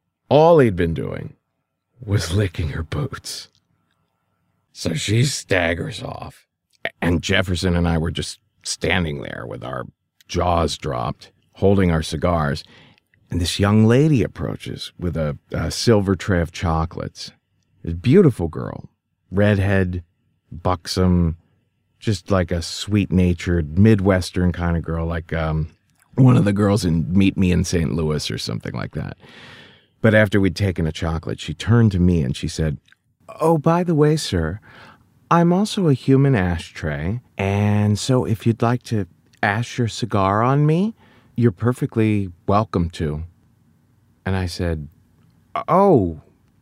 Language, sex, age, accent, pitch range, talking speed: English, male, 50-69, American, 85-115 Hz, 140 wpm